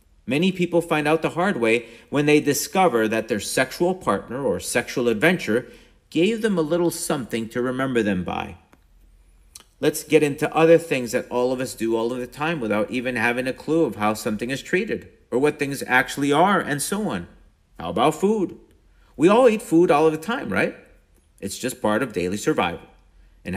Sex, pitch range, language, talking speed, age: male, 125-165 Hz, English, 195 wpm, 50-69